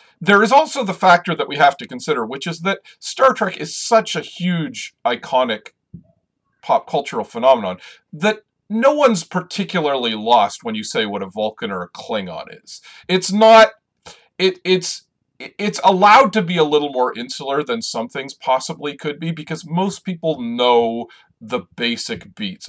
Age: 40-59